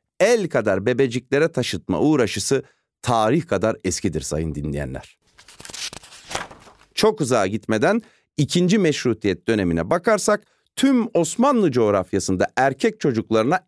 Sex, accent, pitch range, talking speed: male, native, 105-160 Hz, 95 wpm